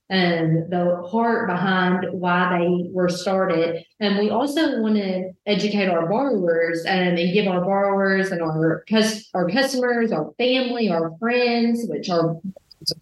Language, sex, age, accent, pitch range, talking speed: English, female, 20-39, American, 170-200 Hz, 145 wpm